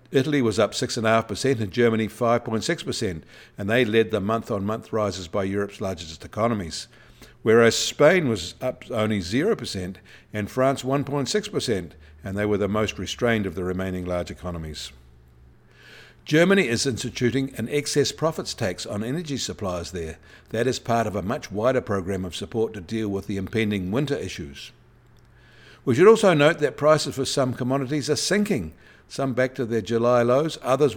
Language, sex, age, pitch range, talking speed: English, male, 60-79, 100-135 Hz, 160 wpm